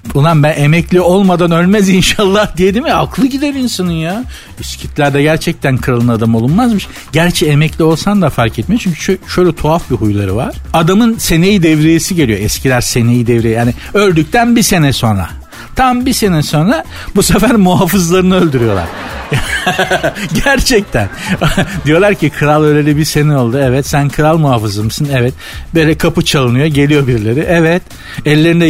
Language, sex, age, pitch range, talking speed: Turkish, male, 60-79, 120-180 Hz, 150 wpm